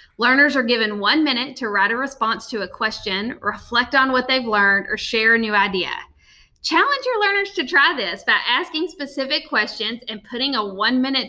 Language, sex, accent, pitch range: English, female, American, 220-295 Hz